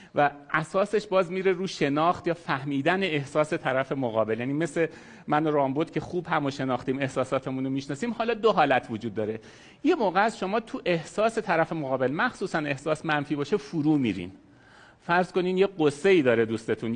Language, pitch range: Persian, 135-205 Hz